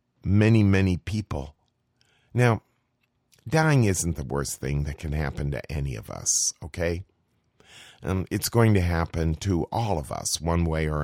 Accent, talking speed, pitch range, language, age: American, 160 wpm, 80-105 Hz, English, 50-69